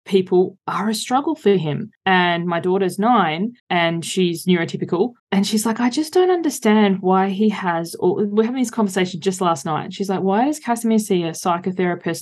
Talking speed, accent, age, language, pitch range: 200 wpm, Australian, 20-39, English, 175-215 Hz